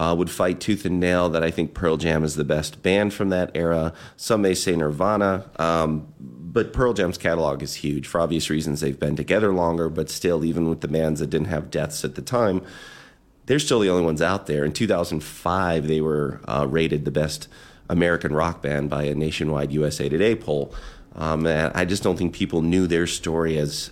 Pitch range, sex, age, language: 75-85 Hz, male, 30-49, English